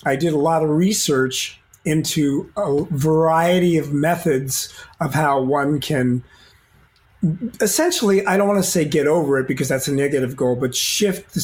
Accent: American